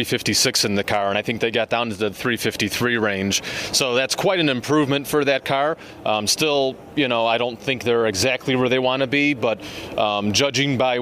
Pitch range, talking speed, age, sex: 115-130 Hz, 220 wpm, 30-49, male